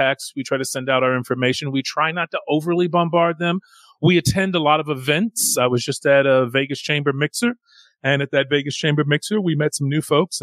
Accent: American